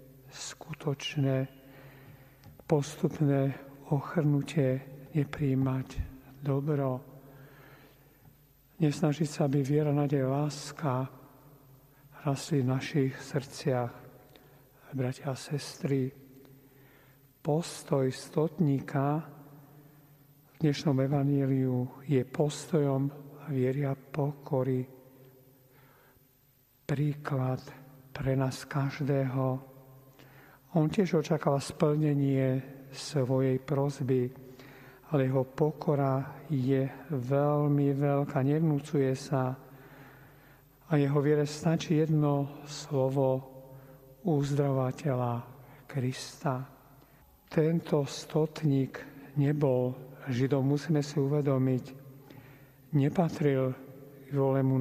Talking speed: 70 wpm